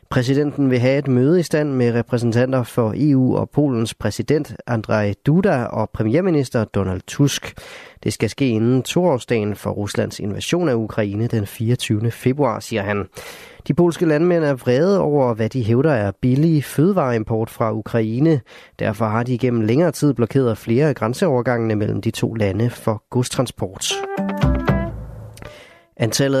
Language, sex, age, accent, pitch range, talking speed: Danish, male, 30-49, native, 110-140 Hz, 150 wpm